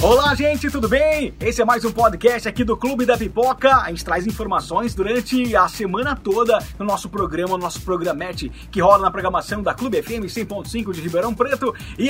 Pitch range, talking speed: 190-245 Hz, 200 wpm